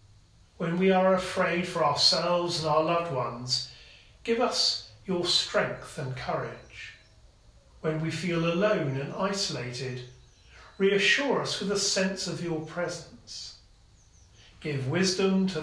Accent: British